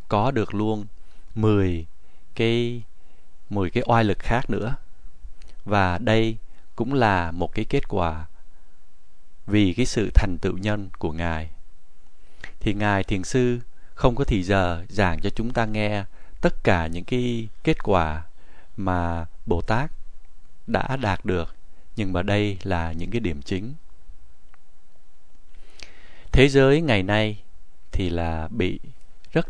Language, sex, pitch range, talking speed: Vietnamese, male, 85-115 Hz, 140 wpm